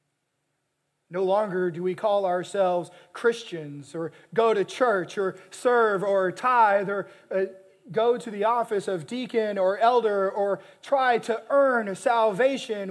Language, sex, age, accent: English, male, 30-49, American